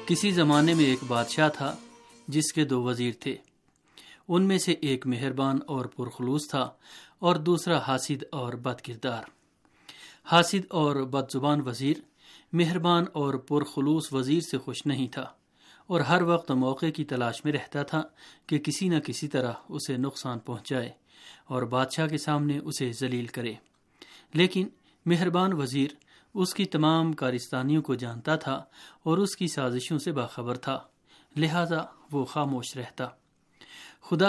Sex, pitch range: male, 130-165 Hz